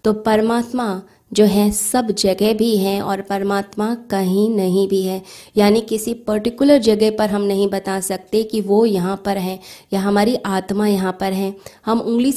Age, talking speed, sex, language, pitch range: 20-39, 175 wpm, female, Hindi, 195-220 Hz